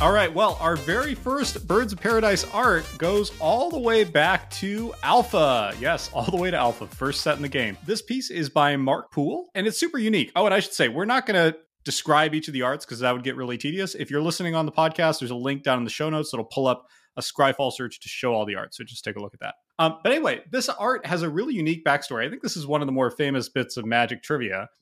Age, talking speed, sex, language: 30-49, 275 wpm, male, English